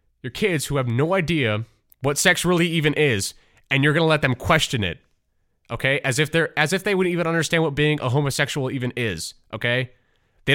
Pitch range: 105-145 Hz